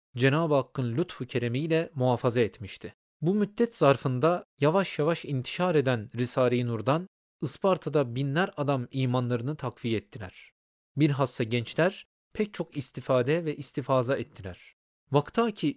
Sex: male